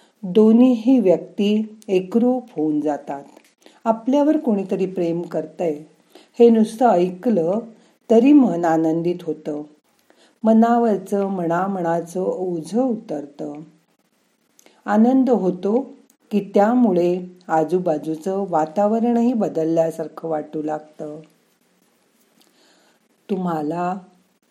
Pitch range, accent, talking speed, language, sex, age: 165-235 Hz, native, 60 wpm, Marathi, female, 50-69